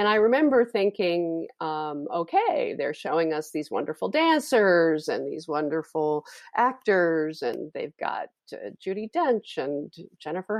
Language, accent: English, American